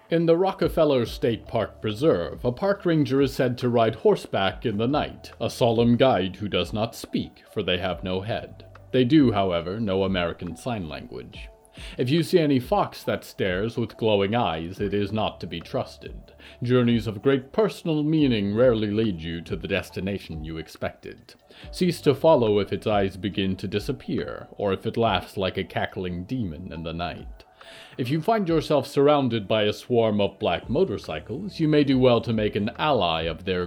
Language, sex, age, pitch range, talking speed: English, male, 40-59, 95-140 Hz, 190 wpm